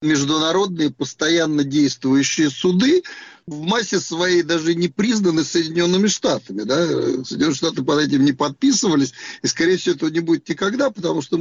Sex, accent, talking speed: male, native, 145 wpm